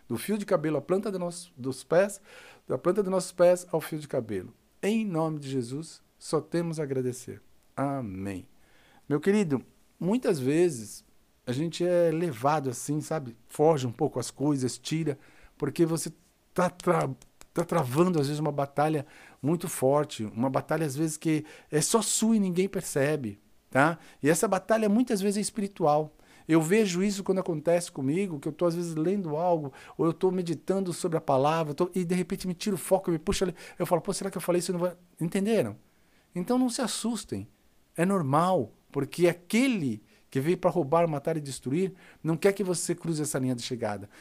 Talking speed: 195 wpm